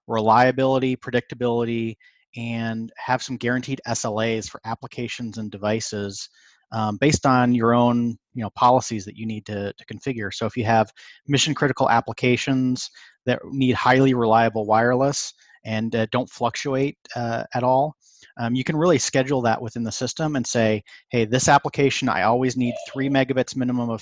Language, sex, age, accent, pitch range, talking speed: English, male, 30-49, American, 110-130 Hz, 160 wpm